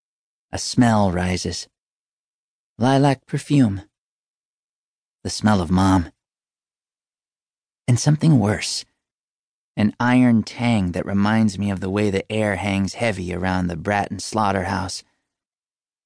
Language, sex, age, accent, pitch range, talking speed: English, male, 30-49, American, 100-125 Hz, 110 wpm